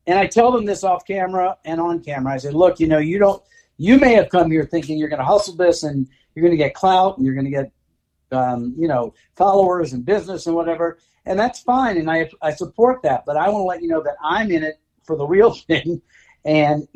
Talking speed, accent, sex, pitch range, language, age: 250 wpm, American, male, 145-190 Hz, English, 50-69